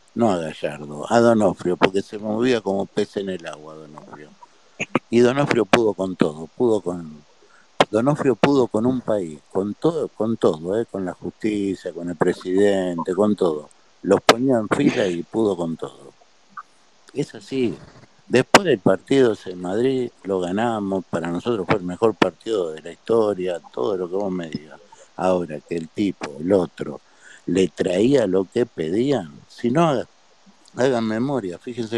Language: Spanish